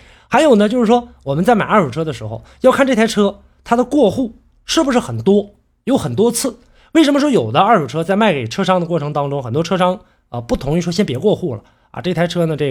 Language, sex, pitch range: Chinese, male, 140-225 Hz